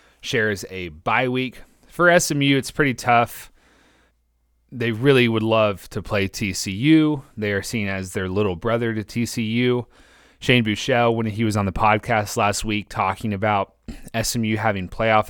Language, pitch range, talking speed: English, 100-120 Hz, 155 wpm